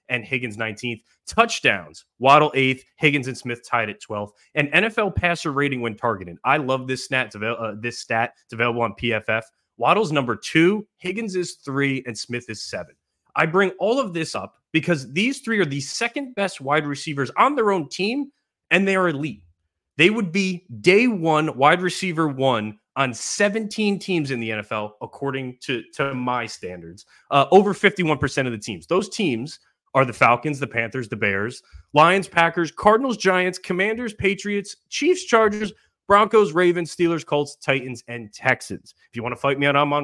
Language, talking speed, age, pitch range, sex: English, 180 wpm, 30-49, 115-180 Hz, male